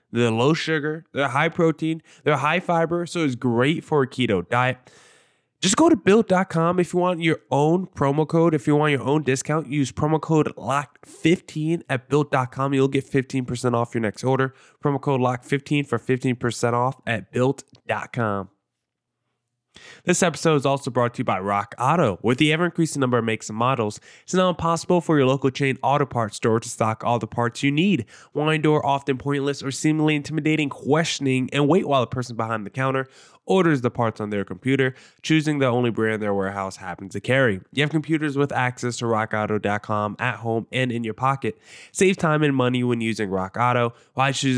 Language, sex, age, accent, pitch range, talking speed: English, male, 20-39, American, 120-155 Hz, 190 wpm